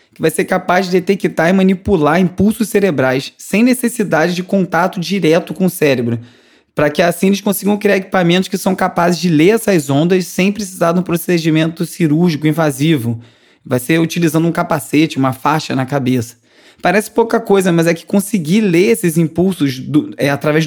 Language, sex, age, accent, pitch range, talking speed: Portuguese, male, 20-39, Brazilian, 150-185 Hz, 175 wpm